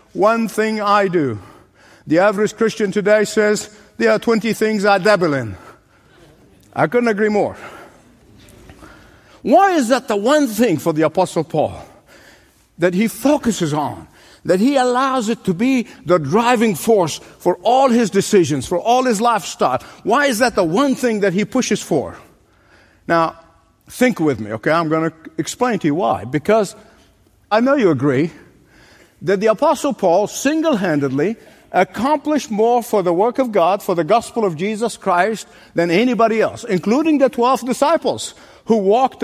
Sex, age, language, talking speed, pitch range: male, 50-69, English, 160 wpm, 180-250 Hz